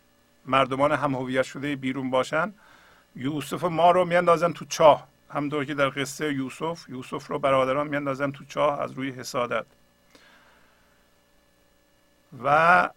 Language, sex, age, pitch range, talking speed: English, male, 50-69, 135-175 Hz, 125 wpm